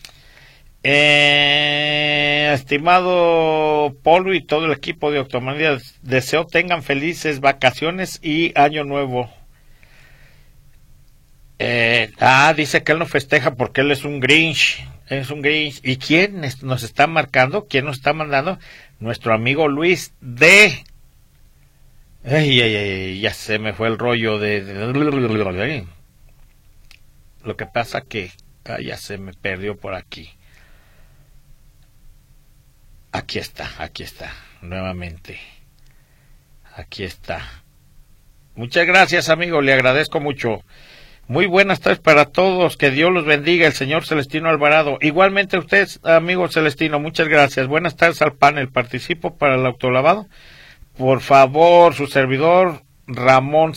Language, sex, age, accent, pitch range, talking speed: Spanish, male, 50-69, Mexican, 130-160 Hz, 125 wpm